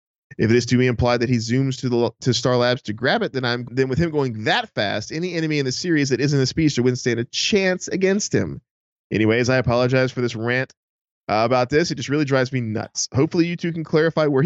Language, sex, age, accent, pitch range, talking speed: English, male, 20-39, American, 120-160 Hz, 255 wpm